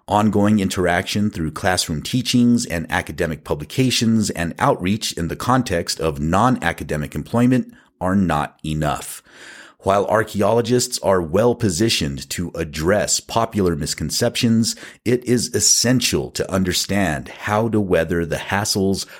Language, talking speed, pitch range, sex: English, 115 wpm, 85-105 Hz, male